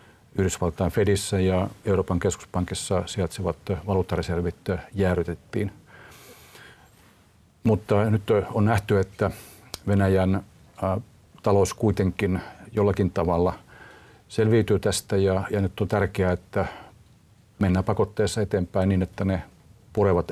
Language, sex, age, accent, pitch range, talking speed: Finnish, male, 50-69, native, 90-105 Hz, 95 wpm